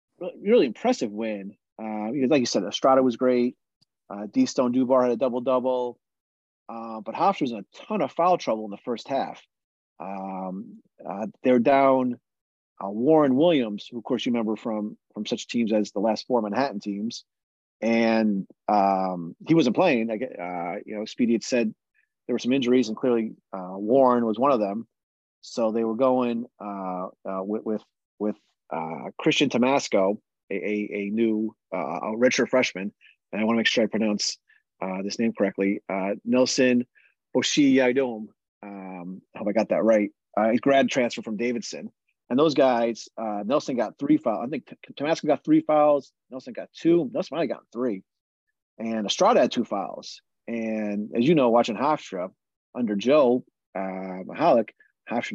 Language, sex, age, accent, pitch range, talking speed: English, male, 30-49, American, 100-125 Hz, 180 wpm